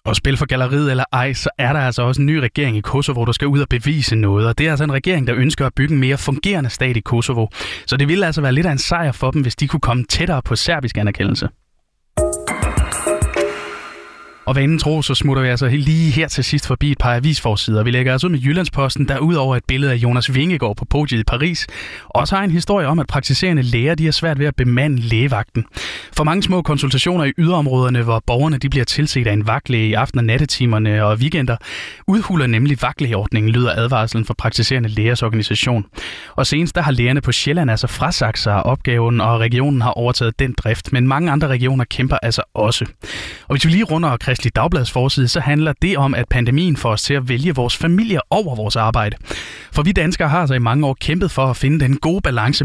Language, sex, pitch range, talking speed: Danish, male, 120-150 Hz, 225 wpm